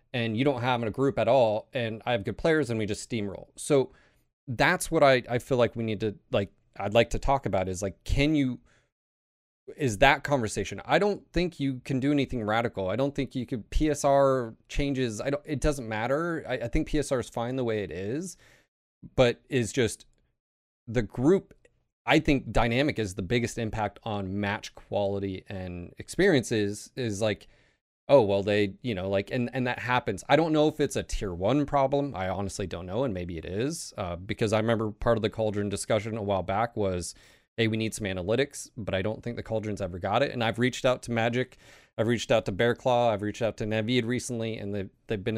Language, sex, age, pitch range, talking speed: English, male, 30-49, 105-130 Hz, 220 wpm